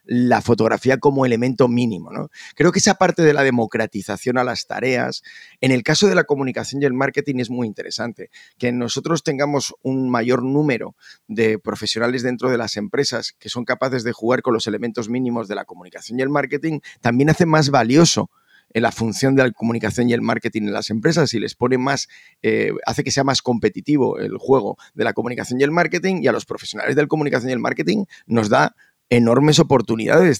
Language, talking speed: Spanish, 200 wpm